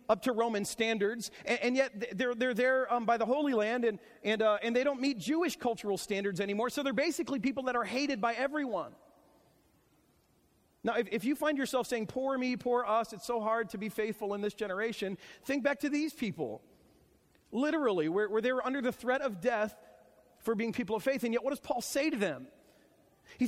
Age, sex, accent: 40-59, male, American